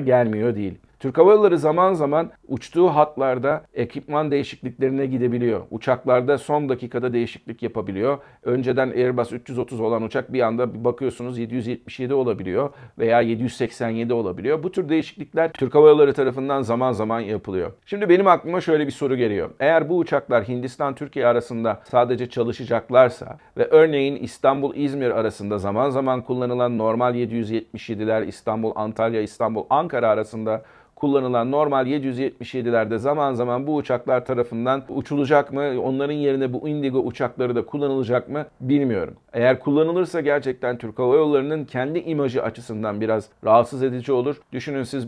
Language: Turkish